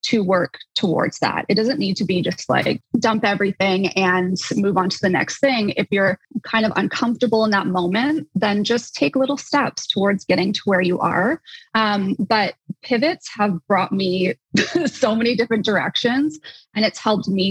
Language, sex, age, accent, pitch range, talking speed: English, female, 20-39, American, 185-220 Hz, 180 wpm